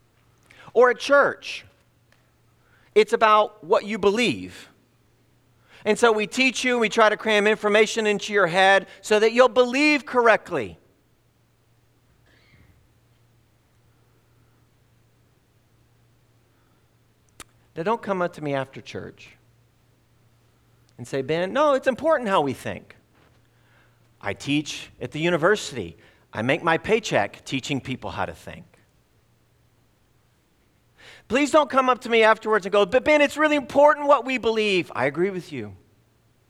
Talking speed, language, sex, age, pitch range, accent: 130 wpm, English, male, 40-59, 115-170 Hz, American